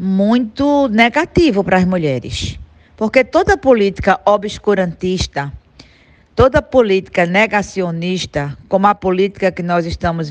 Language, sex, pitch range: Portuguese, female, 175-230 Hz